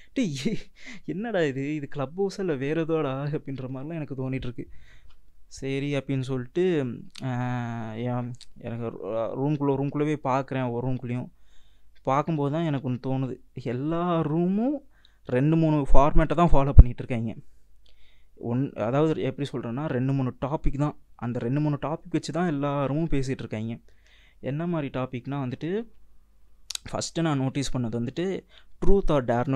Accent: native